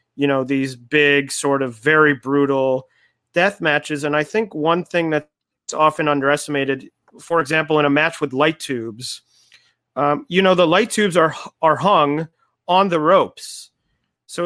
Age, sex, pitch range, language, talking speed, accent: 30-49, male, 140-165 Hz, English, 160 wpm, American